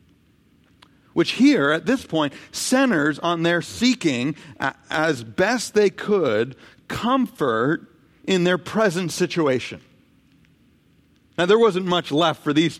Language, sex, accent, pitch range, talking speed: English, male, American, 150-195 Hz, 115 wpm